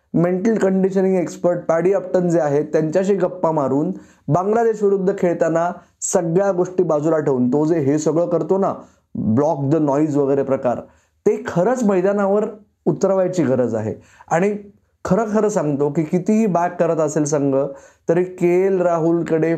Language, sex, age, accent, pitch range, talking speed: Marathi, male, 20-39, native, 155-195 Hz, 145 wpm